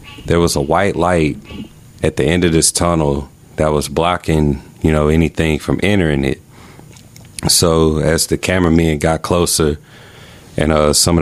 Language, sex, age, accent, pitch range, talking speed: English, male, 30-49, American, 75-85 Hz, 160 wpm